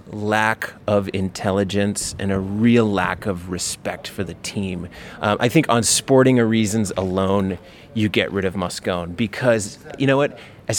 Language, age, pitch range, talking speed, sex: English, 30-49, 100-130 Hz, 160 wpm, male